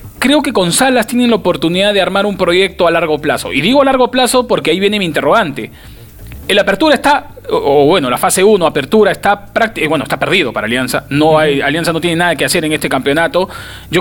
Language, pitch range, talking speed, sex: Spanish, 160-220 Hz, 225 wpm, male